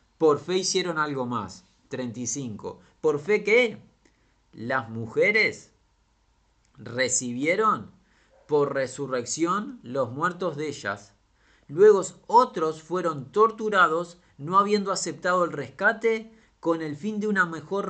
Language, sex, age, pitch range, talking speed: Spanish, male, 30-49, 125-195 Hz, 110 wpm